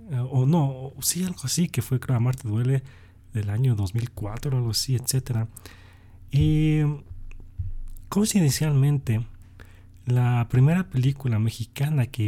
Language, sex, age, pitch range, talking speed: Spanish, male, 40-59, 110-135 Hz, 110 wpm